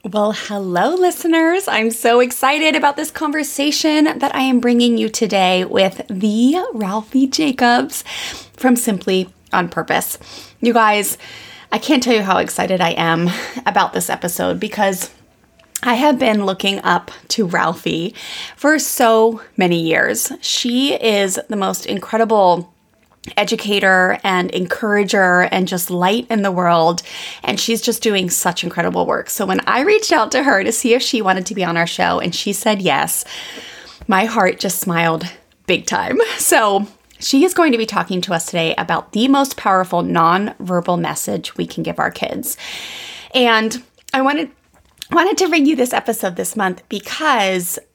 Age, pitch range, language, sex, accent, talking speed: 20-39, 185-255 Hz, English, female, American, 160 wpm